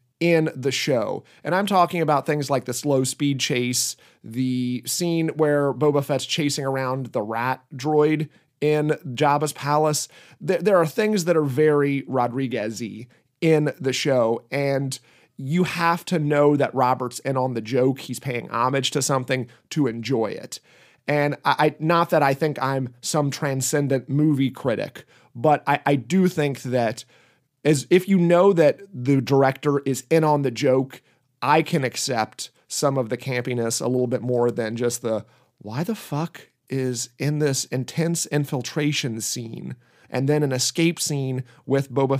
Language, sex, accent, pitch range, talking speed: English, male, American, 130-155 Hz, 160 wpm